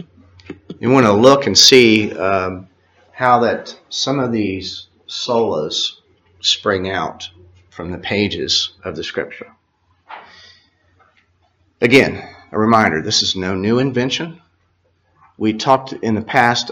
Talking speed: 120 wpm